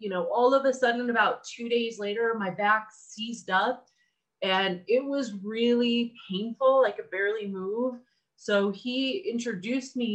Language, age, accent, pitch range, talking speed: English, 30-49, American, 190-235 Hz, 165 wpm